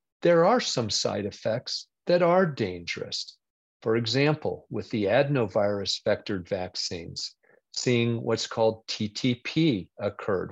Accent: American